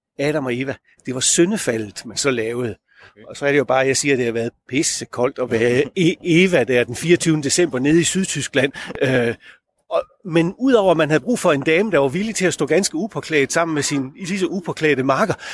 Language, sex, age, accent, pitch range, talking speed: Danish, male, 30-49, native, 155-220 Hz, 230 wpm